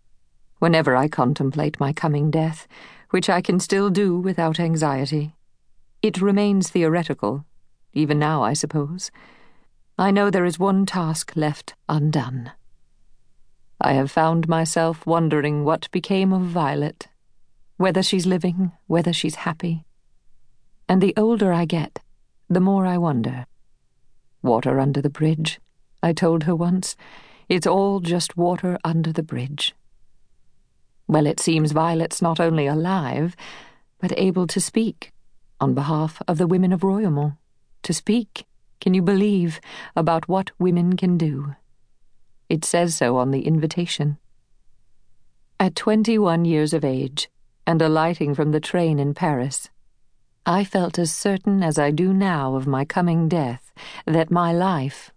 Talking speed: 140 wpm